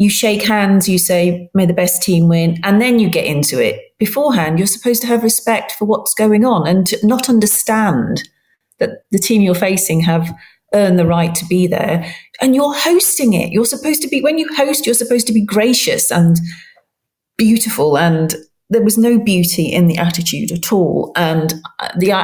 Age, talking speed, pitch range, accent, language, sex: 40-59, 195 wpm, 170-230 Hz, British, English, female